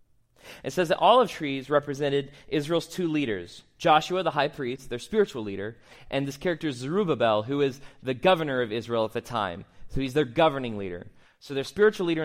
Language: English